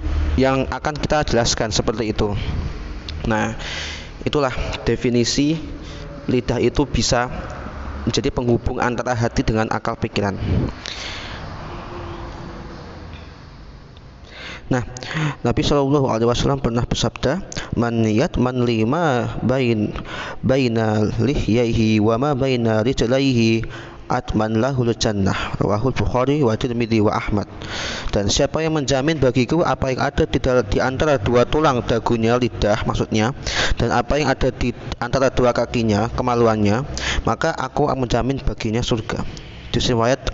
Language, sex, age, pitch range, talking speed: Indonesian, male, 20-39, 110-130 Hz, 110 wpm